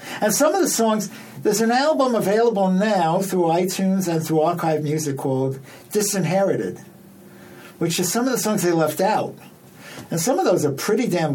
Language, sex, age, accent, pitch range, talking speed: English, male, 60-79, American, 140-185 Hz, 180 wpm